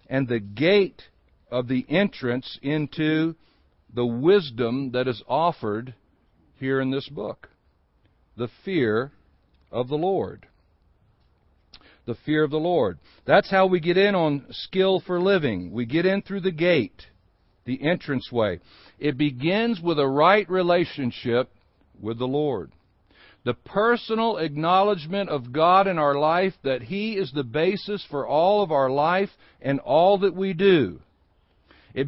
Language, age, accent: English, 60-79, American